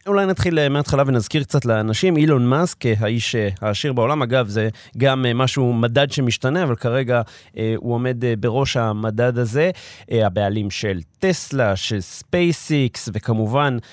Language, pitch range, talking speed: Hebrew, 115-155 Hz, 140 wpm